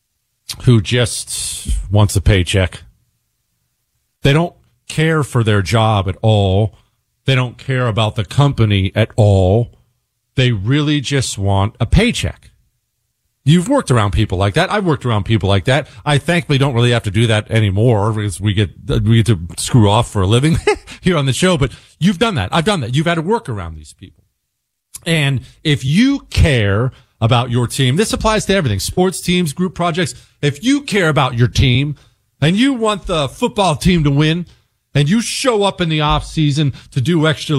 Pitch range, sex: 115-165 Hz, male